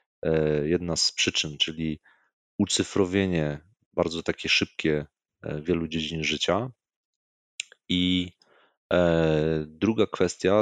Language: Polish